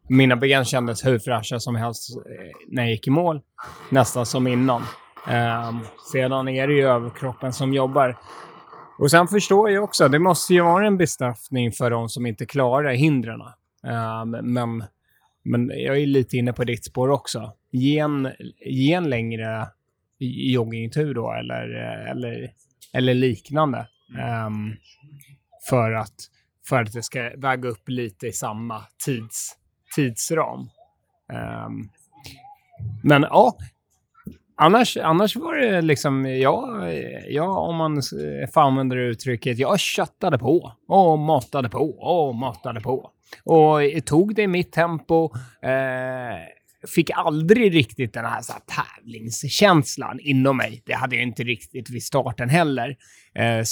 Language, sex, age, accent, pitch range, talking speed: Swedish, male, 20-39, native, 120-150 Hz, 140 wpm